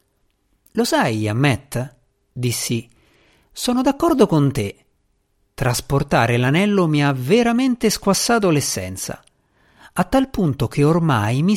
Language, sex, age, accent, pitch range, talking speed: Italian, male, 50-69, native, 115-180 Hz, 110 wpm